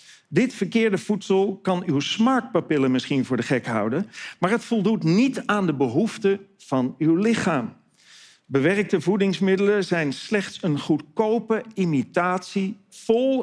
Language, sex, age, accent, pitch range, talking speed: Dutch, male, 50-69, Dutch, 135-195 Hz, 130 wpm